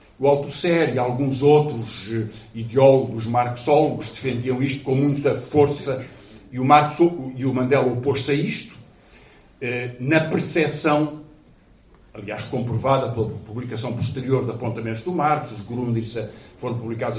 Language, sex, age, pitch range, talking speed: Portuguese, male, 50-69, 115-145 Hz, 125 wpm